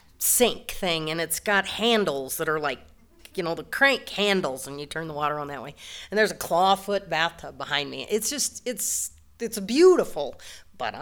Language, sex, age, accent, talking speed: English, female, 40-59, American, 190 wpm